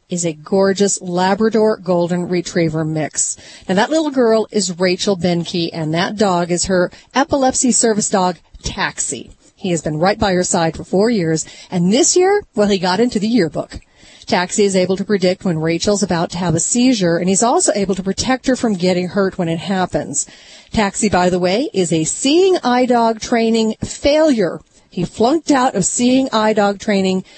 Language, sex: English, female